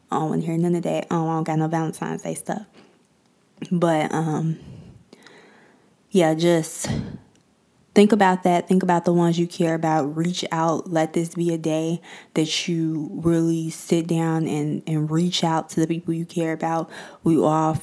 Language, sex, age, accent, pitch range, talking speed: English, female, 20-39, American, 160-175 Hz, 180 wpm